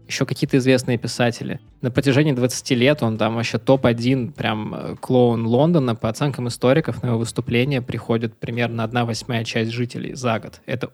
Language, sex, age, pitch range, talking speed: Russian, male, 20-39, 115-130 Hz, 165 wpm